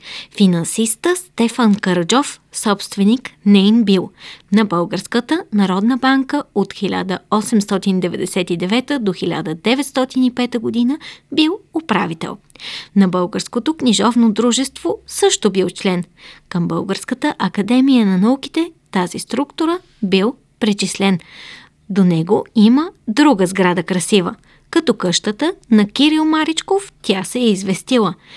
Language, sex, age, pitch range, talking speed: Bulgarian, female, 20-39, 190-265 Hz, 100 wpm